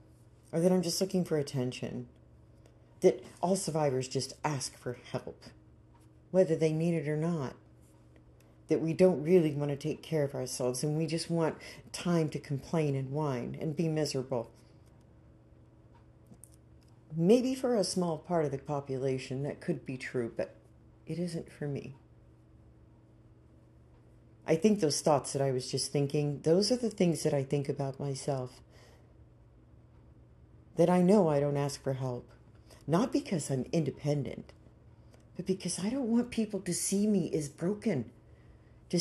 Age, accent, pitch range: 40-59, American, 135-185 Hz